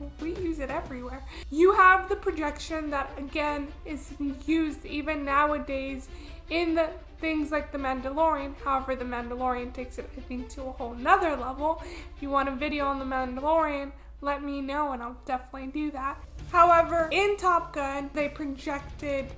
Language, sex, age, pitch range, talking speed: English, female, 20-39, 280-330 Hz, 165 wpm